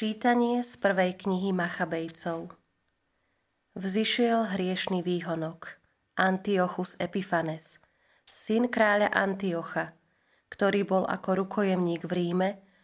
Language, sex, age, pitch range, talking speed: Slovak, female, 30-49, 175-205 Hz, 90 wpm